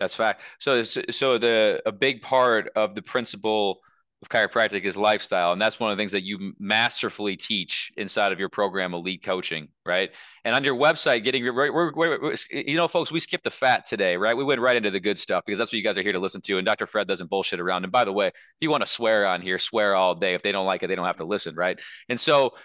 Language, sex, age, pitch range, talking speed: English, male, 30-49, 120-155 Hz, 260 wpm